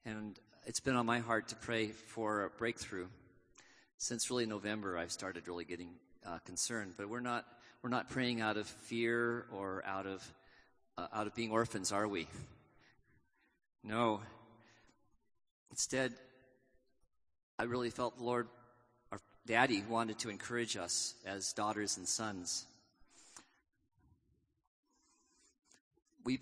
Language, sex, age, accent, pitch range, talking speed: English, male, 40-59, American, 100-120 Hz, 130 wpm